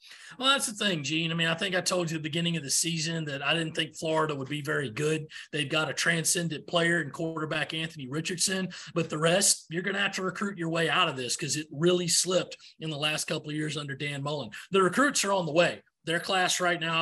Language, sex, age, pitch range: English, male, 30-49, 160-185 Hz